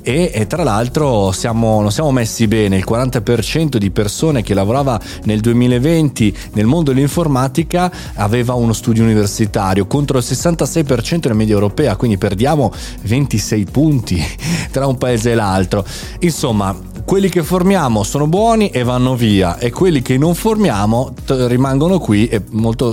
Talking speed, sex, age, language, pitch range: 150 wpm, male, 30-49, Italian, 100-135 Hz